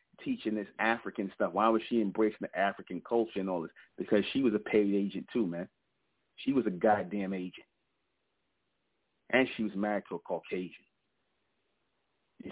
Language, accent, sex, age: English, American, male, 40-59